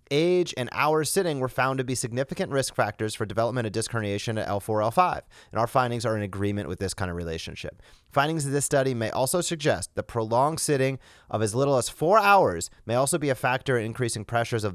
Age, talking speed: 30-49, 225 wpm